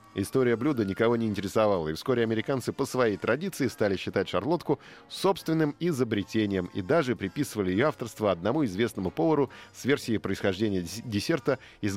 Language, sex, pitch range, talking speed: Russian, male, 95-125 Hz, 145 wpm